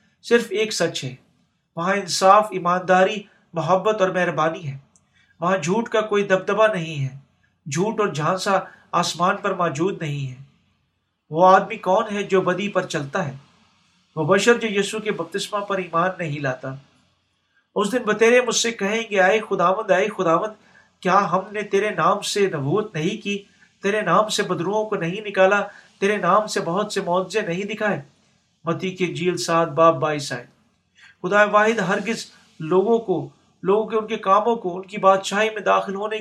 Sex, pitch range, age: male, 170-205 Hz, 50-69